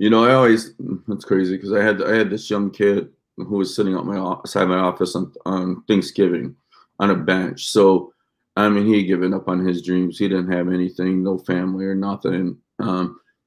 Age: 30-49